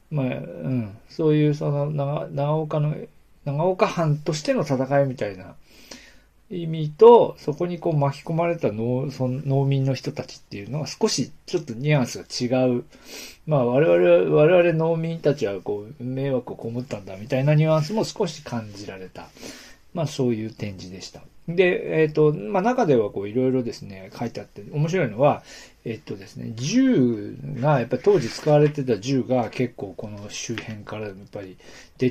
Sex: male